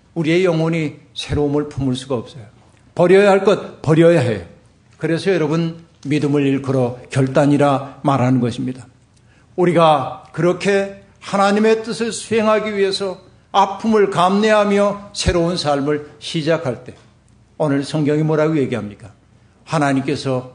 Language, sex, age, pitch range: Korean, male, 50-69, 135-205 Hz